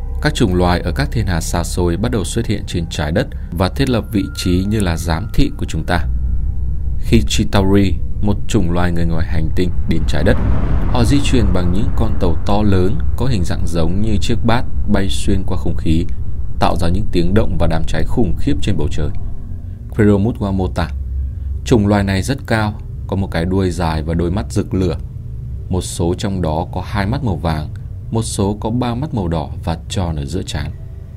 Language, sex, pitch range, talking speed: Vietnamese, male, 85-110 Hz, 220 wpm